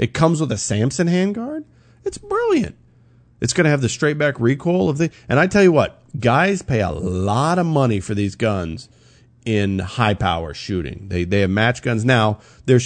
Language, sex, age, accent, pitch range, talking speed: English, male, 40-59, American, 100-140 Hz, 195 wpm